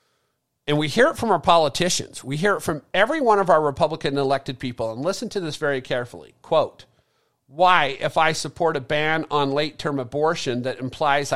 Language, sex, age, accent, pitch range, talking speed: English, male, 50-69, American, 130-170 Hz, 195 wpm